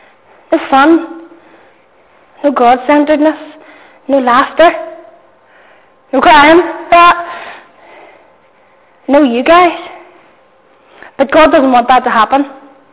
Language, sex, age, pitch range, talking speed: English, female, 20-39, 240-285 Hz, 85 wpm